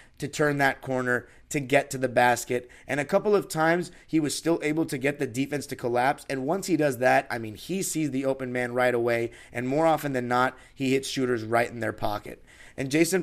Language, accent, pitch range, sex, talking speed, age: English, American, 120-145 Hz, male, 235 wpm, 30-49